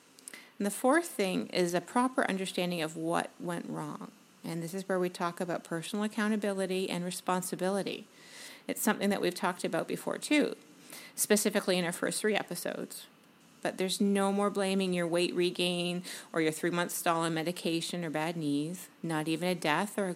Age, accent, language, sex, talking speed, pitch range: 40-59, American, English, female, 180 wpm, 170-225 Hz